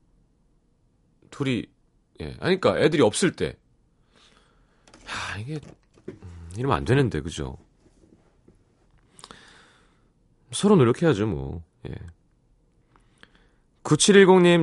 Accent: native